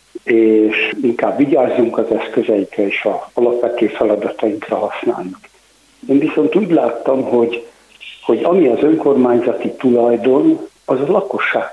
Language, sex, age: Hungarian, male, 60-79